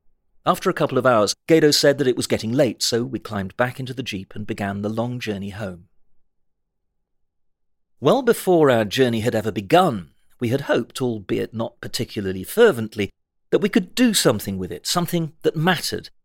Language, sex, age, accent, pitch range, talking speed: English, male, 40-59, British, 110-160 Hz, 180 wpm